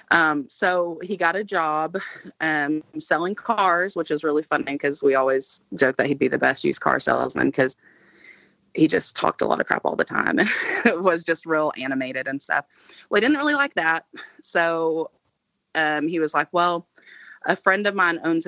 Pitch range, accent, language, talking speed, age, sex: 150-190 Hz, American, English, 195 wpm, 30-49, female